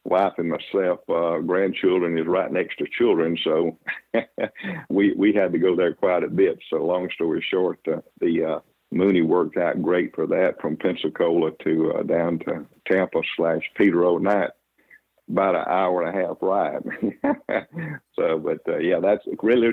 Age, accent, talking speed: 50-69, American, 175 wpm